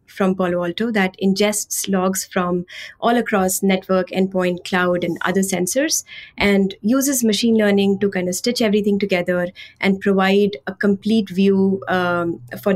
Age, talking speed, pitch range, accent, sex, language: 20-39, 150 wpm, 185-210 Hz, Indian, female, English